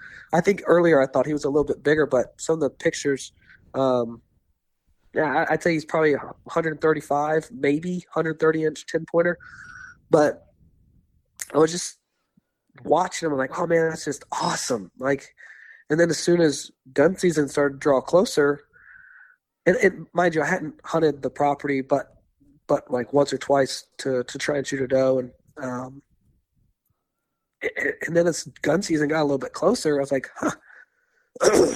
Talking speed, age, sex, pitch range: 170 wpm, 20-39, male, 140-175 Hz